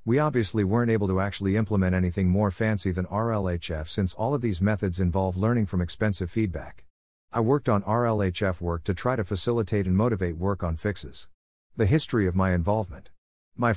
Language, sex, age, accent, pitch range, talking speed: English, male, 50-69, American, 90-110 Hz, 185 wpm